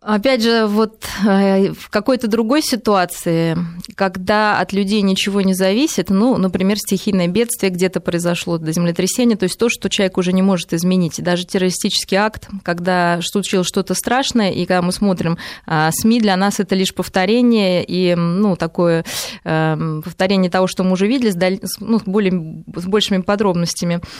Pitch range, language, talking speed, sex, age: 175-210 Hz, Russian, 155 wpm, female, 20-39